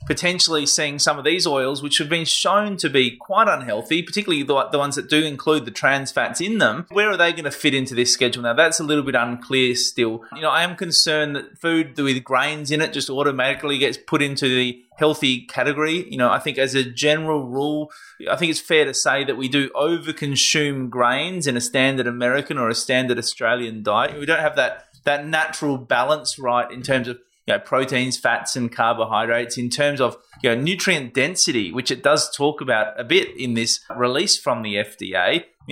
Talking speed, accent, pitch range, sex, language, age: 215 wpm, Australian, 125-155 Hz, male, English, 20-39